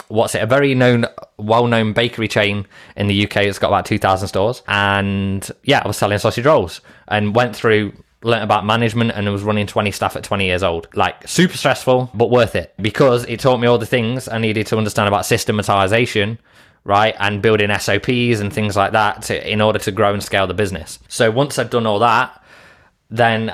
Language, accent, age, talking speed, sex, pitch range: English, British, 20-39, 210 wpm, male, 100-120 Hz